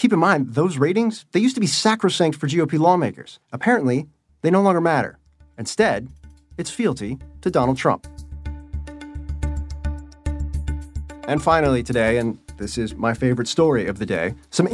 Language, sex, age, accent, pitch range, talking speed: English, male, 30-49, American, 130-170 Hz, 150 wpm